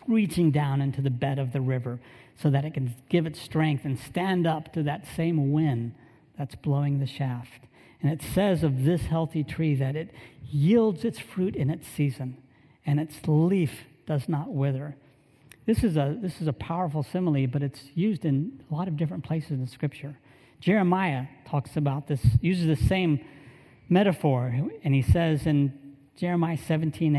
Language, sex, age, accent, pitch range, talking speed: English, male, 50-69, American, 135-165 Hz, 185 wpm